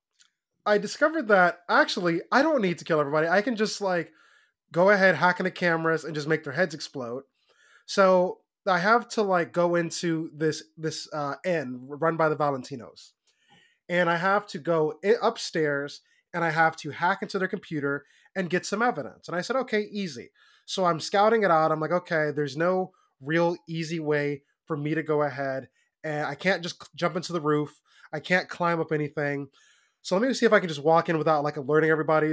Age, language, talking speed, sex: 20-39, English, 200 wpm, male